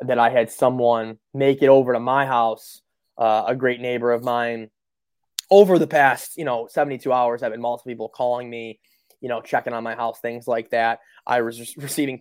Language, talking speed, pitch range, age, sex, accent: English, 200 wpm, 120-140 Hz, 20-39, male, American